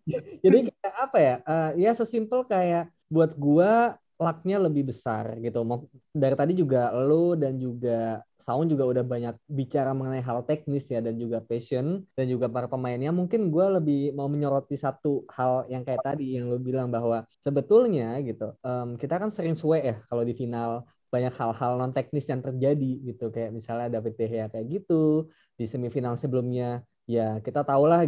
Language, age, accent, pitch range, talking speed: Indonesian, 20-39, native, 125-165 Hz, 175 wpm